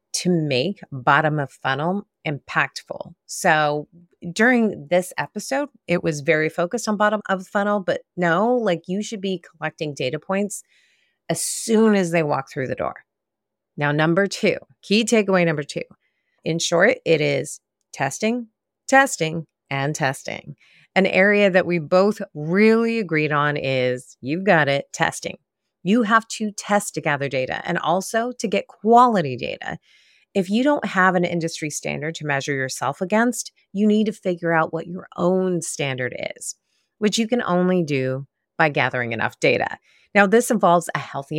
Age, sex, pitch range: 30-49, female, 150-205 Hz